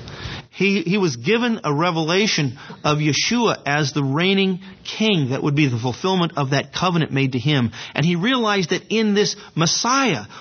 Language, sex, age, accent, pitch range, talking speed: English, male, 50-69, American, 130-190 Hz, 175 wpm